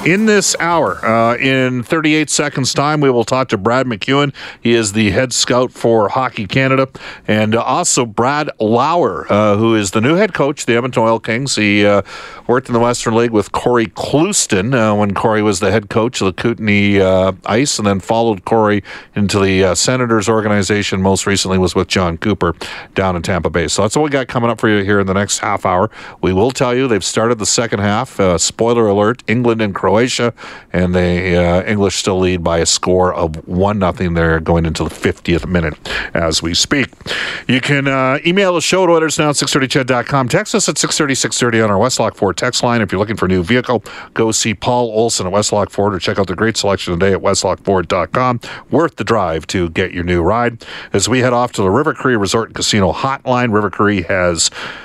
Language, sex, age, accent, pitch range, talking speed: English, male, 50-69, American, 95-125 Hz, 215 wpm